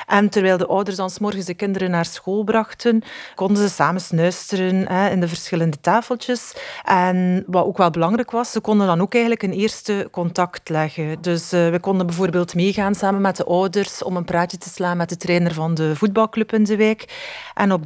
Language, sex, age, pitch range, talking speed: English, female, 40-59, 180-210 Hz, 200 wpm